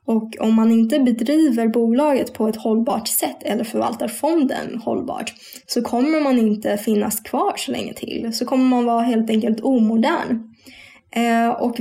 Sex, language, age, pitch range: female, Swedish, 10-29, 225-265 Hz